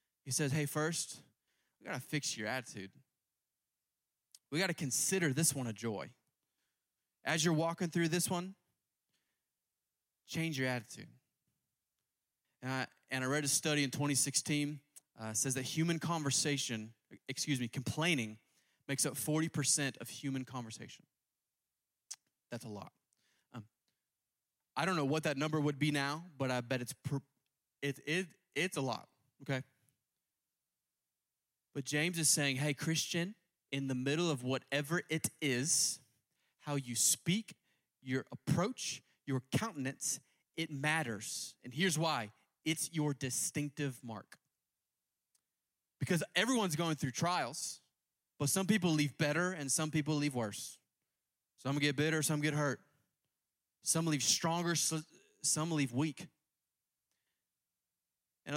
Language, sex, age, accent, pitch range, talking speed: English, male, 20-39, American, 130-160 Hz, 130 wpm